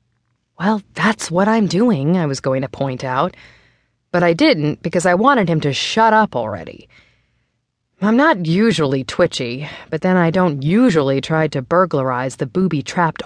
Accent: American